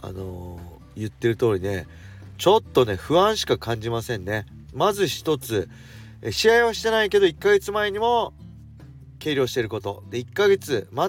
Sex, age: male, 40-59